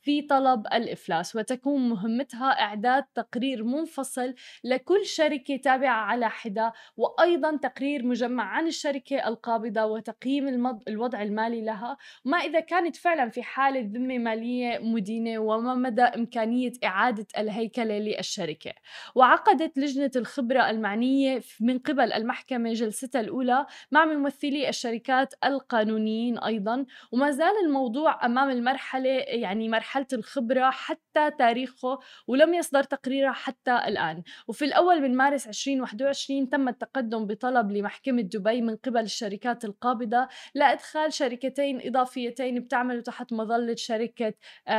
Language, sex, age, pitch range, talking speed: Arabic, female, 20-39, 225-270 Hz, 120 wpm